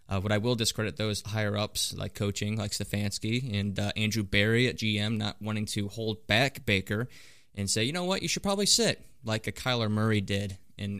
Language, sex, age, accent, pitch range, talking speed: English, male, 20-39, American, 105-120 Hz, 205 wpm